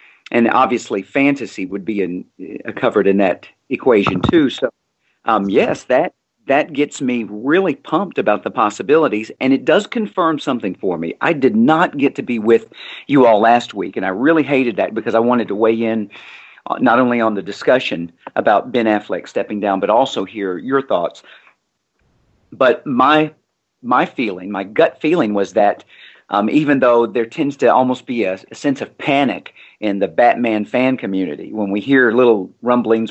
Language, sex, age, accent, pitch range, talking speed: English, male, 50-69, American, 105-130 Hz, 180 wpm